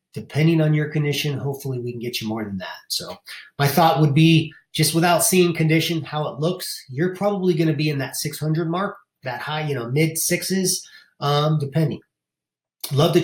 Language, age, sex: English, 30-49, male